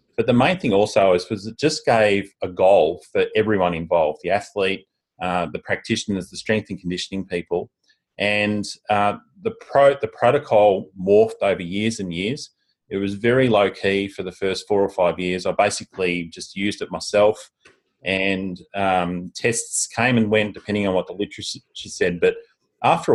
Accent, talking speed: Australian, 170 wpm